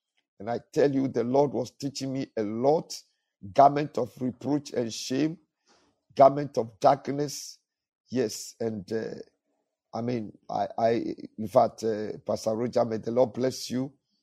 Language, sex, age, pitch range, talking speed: English, male, 50-69, 120-150 Hz, 150 wpm